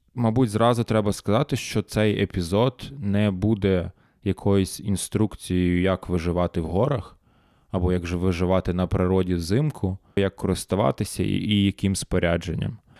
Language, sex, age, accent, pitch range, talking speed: Ukrainian, male, 20-39, native, 90-105 Hz, 125 wpm